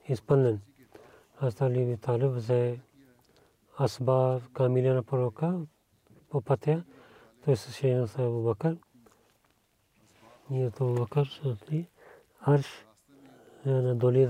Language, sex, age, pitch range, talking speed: Bulgarian, male, 40-59, 115-140 Hz, 95 wpm